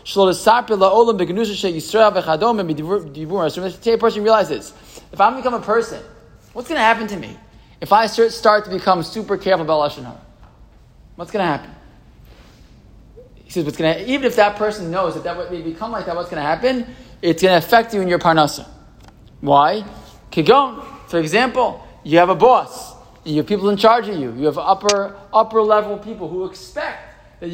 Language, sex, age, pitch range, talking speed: English, male, 20-39, 180-240 Hz, 170 wpm